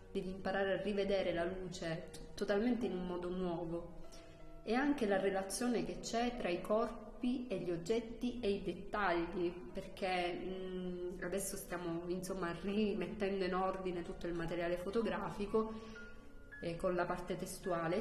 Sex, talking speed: female, 145 wpm